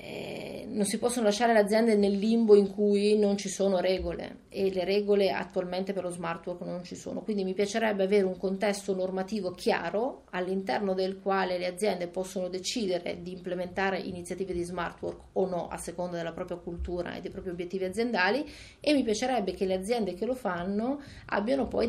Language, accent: Italian, native